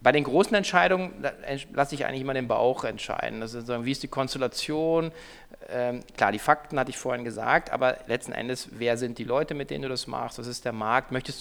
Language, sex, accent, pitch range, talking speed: German, male, German, 115-135 Hz, 220 wpm